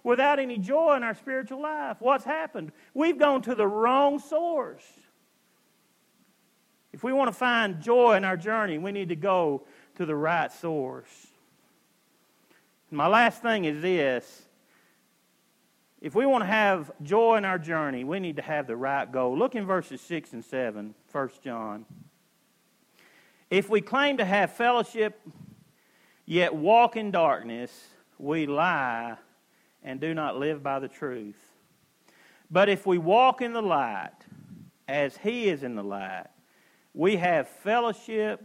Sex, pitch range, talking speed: male, 140-230 Hz, 150 wpm